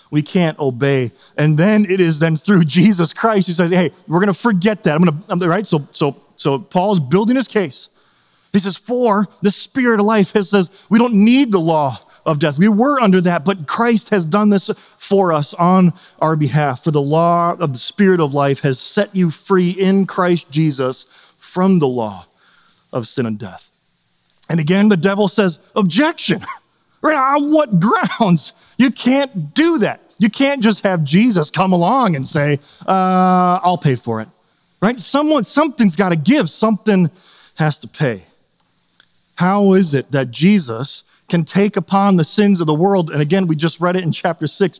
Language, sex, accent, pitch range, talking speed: English, male, American, 155-205 Hz, 185 wpm